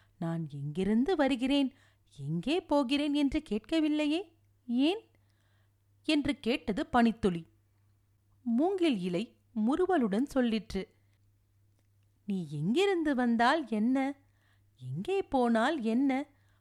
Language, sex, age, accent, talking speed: Tamil, female, 40-59, native, 80 wpm